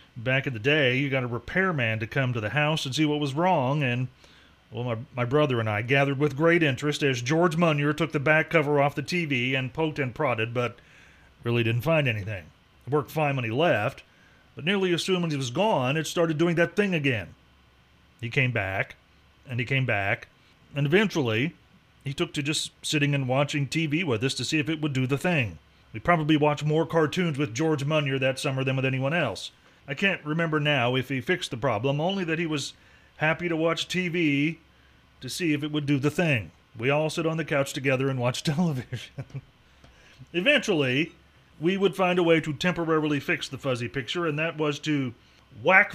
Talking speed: 210 wpm